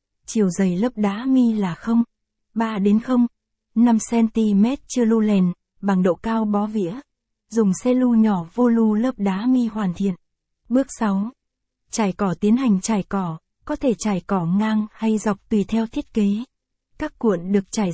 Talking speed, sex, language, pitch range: 175 wpm, female, Vietnamese, 200-240 Hz